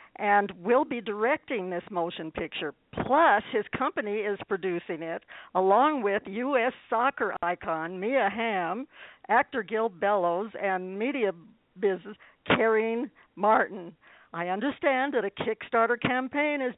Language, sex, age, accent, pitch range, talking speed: English, female, 60-79, American, 180-235 Hz, 125 wpm